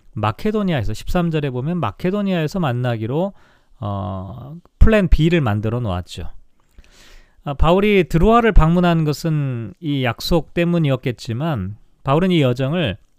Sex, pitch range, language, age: male, 125-180 Hz, Korean, 40-59